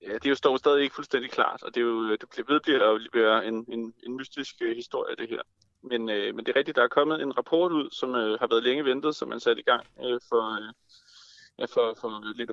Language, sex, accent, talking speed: Danish, male, native, 255 wpm